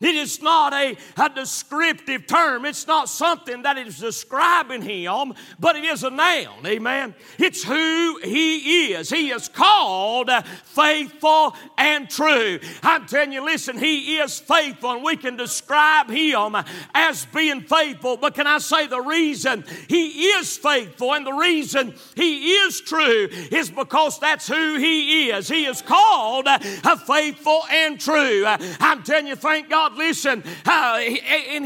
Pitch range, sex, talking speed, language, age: 260-310 Hz, male, 155 wpm, English, 50-69